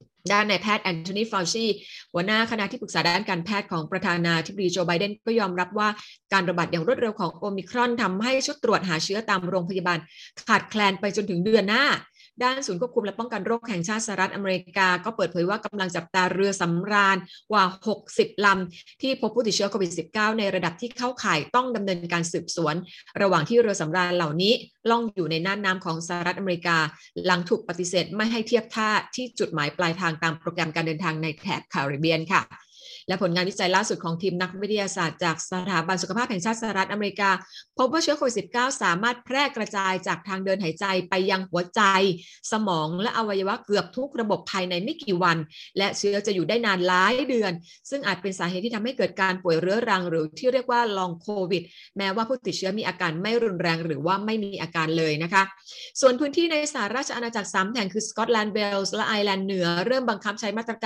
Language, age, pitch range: Thai, 20-39, 180-220 Hz